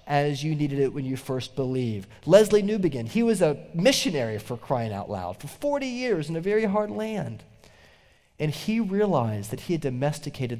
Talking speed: 185 wpm